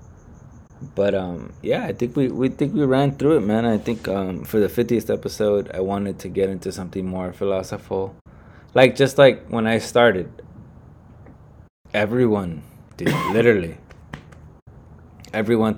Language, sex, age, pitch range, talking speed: English, male, 20-39, 95-120 Hz, 145 wpm